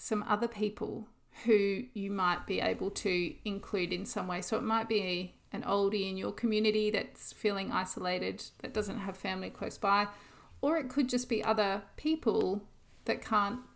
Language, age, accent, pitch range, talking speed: English, 40-59, Australian, 195-235 Hz, 175 wpm